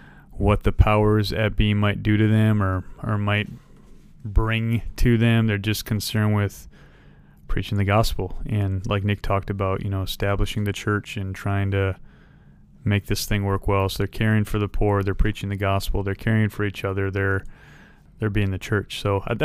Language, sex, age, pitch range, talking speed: English, male, 30-49, 100-115 Hz, 190 wpm